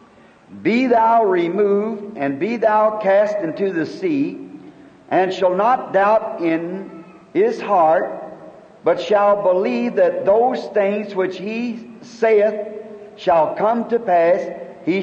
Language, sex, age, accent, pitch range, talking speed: English, male, 50-69, American, 185-240 Hz, 125 wpm